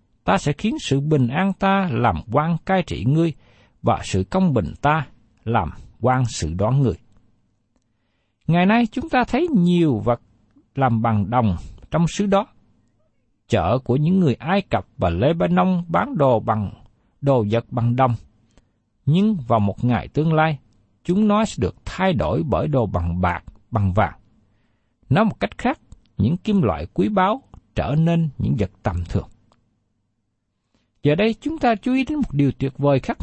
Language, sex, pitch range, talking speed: Vietnamese, male, 110-175 Hz, 175 wpm